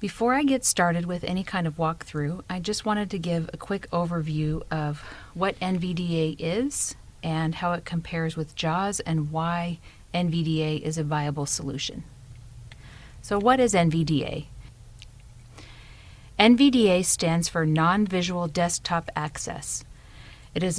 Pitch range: 140-185 Hz